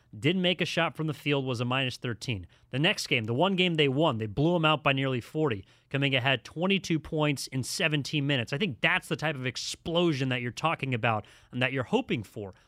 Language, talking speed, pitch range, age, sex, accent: English, 230 wpm, 130-175 Hz, 30-49, male, American